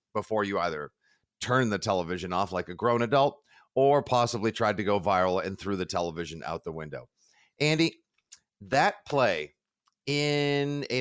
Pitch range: 105-145 Hz